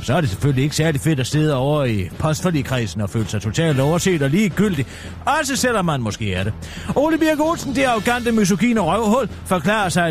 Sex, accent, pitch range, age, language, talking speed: male, native, 140-215 Hz, 30-49, Danish, 200 wpm